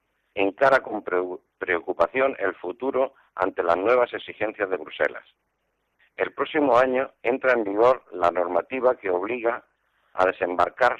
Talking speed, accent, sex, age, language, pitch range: 125 wpm, Spanish, male, 50-69, Spanish, 95-135 Hz